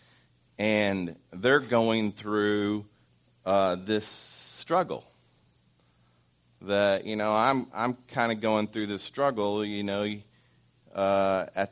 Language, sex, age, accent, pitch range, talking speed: English, male, 40-59, American, 85-105 Hz, 115 wpm